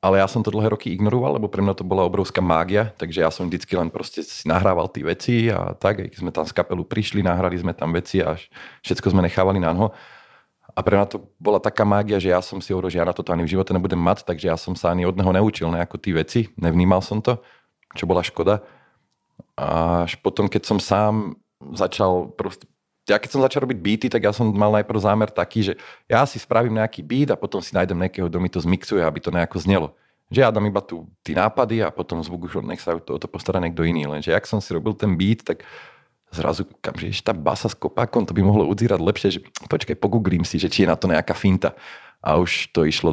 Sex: male